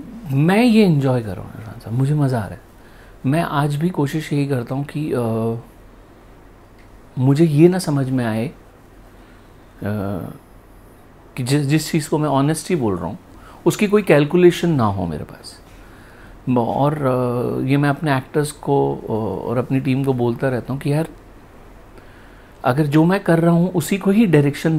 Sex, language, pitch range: male, Hindi, 115-160 Hz